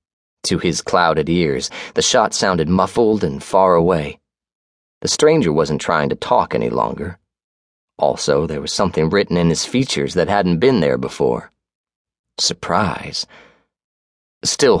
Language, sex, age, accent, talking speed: English, male, 30-49, American, 140 wpm